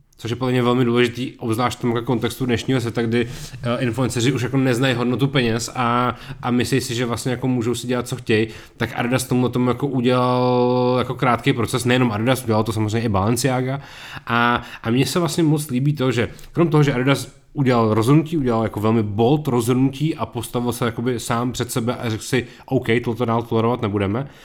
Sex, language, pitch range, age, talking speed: male, Czech, 115-135 Hz, 30-49, 195 wpm